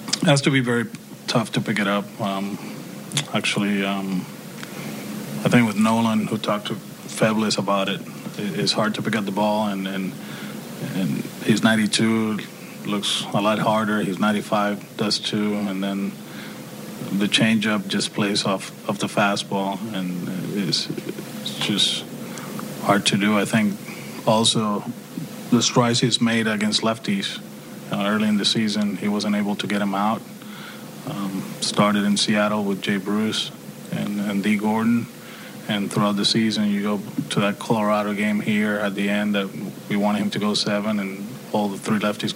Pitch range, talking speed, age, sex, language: 100-110 Hz, 165 wpm, 20-39, male, English